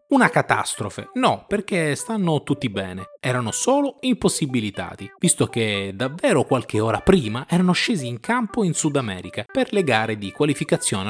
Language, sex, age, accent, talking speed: Italian, male, 20-39, native, 150 wpm